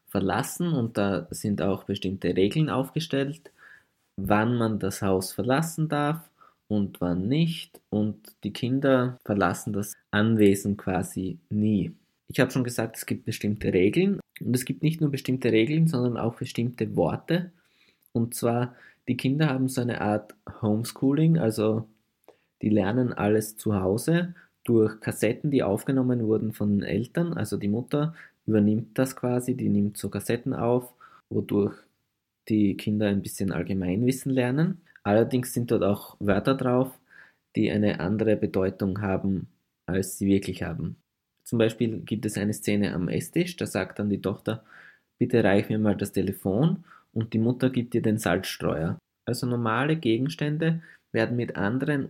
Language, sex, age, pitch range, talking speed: German, male, 20-39, 100-130 Hz, 150 wpm